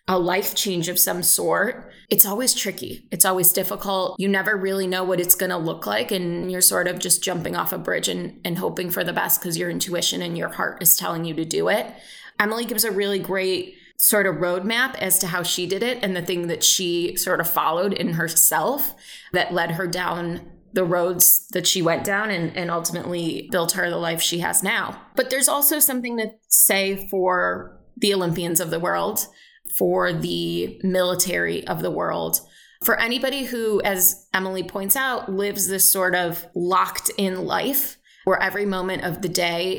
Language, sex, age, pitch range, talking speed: English, female, 20-39, 175-195 Hz, 200 wpm